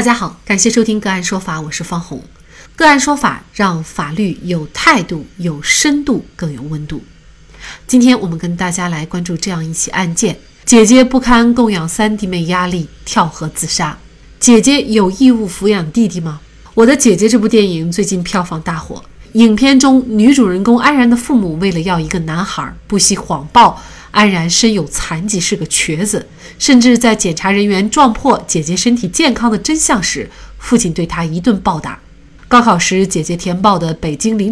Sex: female